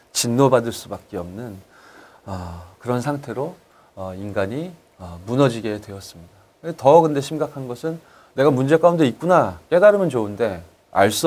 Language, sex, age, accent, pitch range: Korean, male, 30-49, native, 95-140 Hz